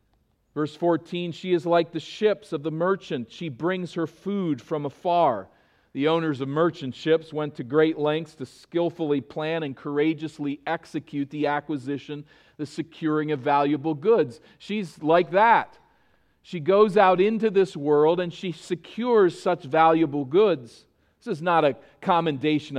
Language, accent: English, American